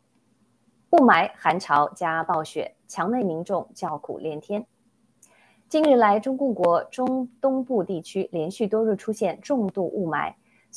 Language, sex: Chinese, female